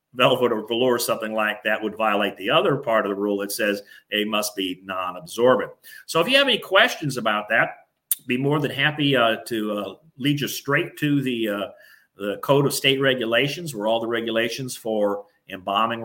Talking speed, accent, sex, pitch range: 195 wpm, American, male, 110-150 Hz